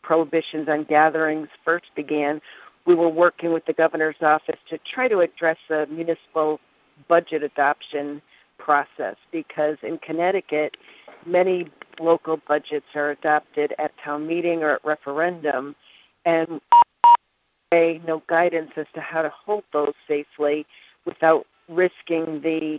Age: 50-69